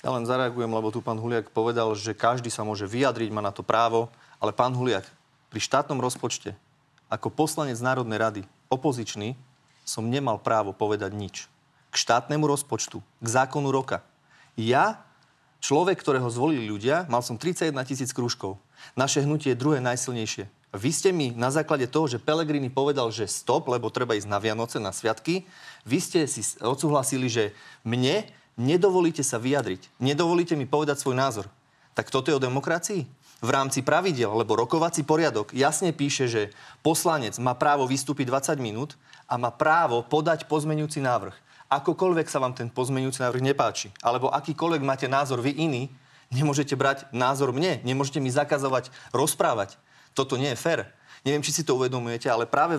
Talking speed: 165 wpm